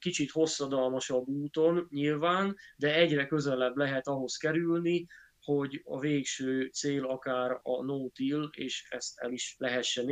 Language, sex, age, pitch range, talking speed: Hungarian, male, 20-39, 130-150 Hz, 130 wpm